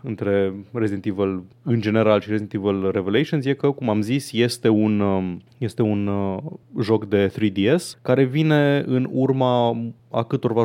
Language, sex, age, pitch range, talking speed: Romanian, male, 20-39, 110-135 Hz, 150 wpm